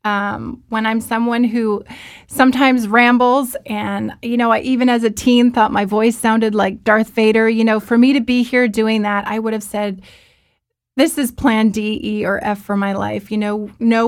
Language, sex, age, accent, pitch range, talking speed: English, female, 30-49, American, 200-230 Hz, 205 wpm